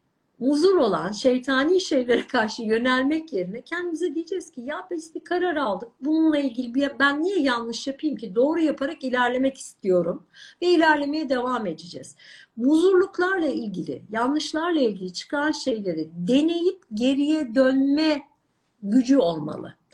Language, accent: Turkish, native